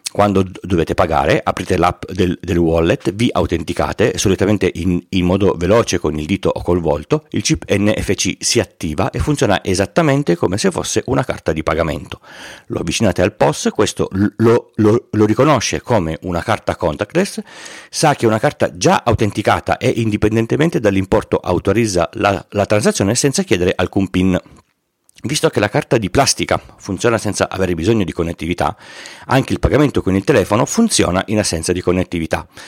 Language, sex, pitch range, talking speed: Italian, male, 90-115 Hz, 165 wpm